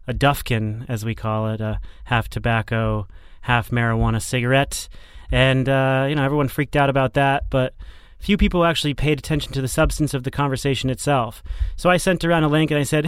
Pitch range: 120-155 Hz